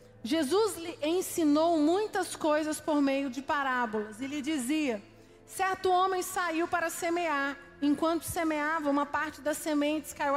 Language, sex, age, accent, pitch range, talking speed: Portuguese, female, 40-59, Brazilian, 265-330 Hz, 140 wpm